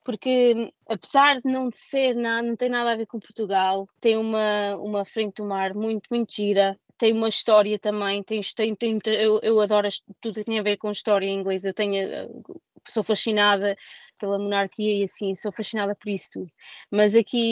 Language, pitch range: Portuguese, 195-225 Hz